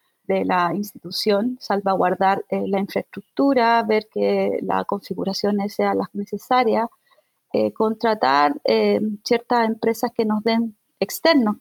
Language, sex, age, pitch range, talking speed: Spanish, female, 30-49, 205-250 Hz, 120 wpm